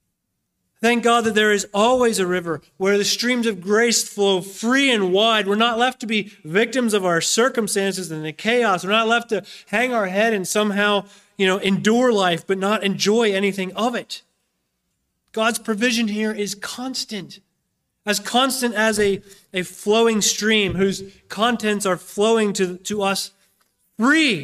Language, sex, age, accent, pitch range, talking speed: English, male, 30-49, American, 185-235 Hz, 165 wpm